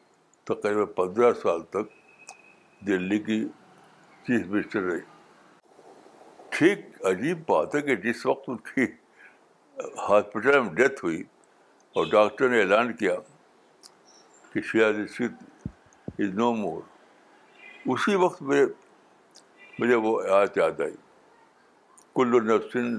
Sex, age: male, 60-79